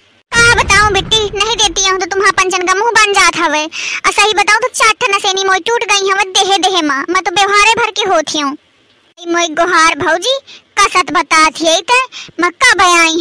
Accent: native